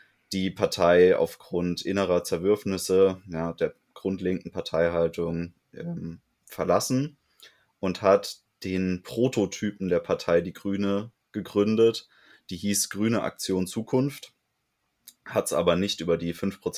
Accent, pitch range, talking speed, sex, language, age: German, 90-115 Hz, 115 wpm, male, German, 20-39